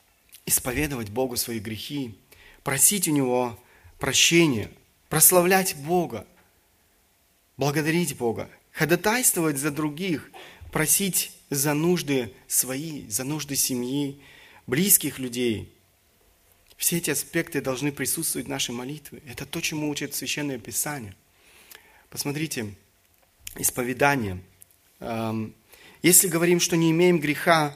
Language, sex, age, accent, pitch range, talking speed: Russian, male, 30-49, native, 120-150 Hz, 100 wpm